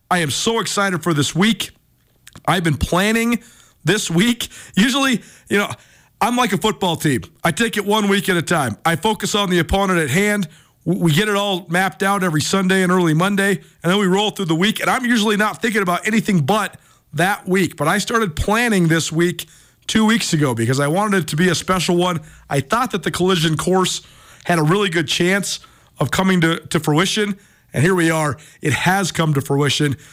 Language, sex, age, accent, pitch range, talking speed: English, male, 40-59, American, 160-195 Hz, 210 wpm